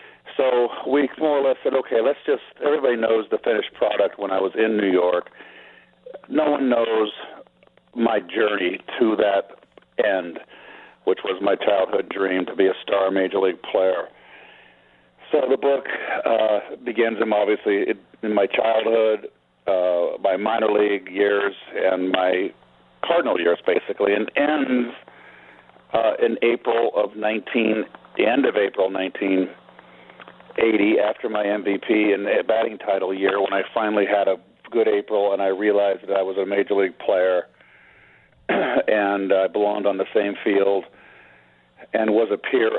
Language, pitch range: English, 95-110 Hz